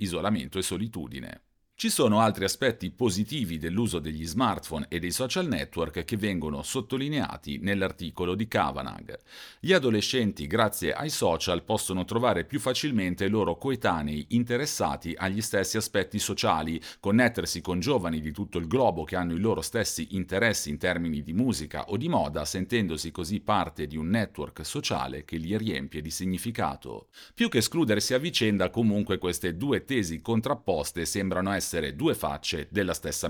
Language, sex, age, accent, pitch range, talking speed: Italian, male, 40-59, native, 80-110 Hz, 155 wpm